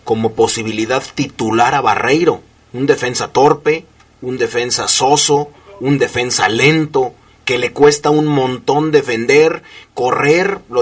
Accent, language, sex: Mexican, Spanish, male